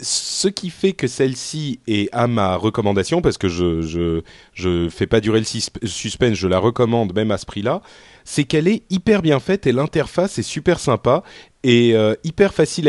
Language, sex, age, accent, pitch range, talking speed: French, male, 30-49, French, 100-140 Hz, 195 wpm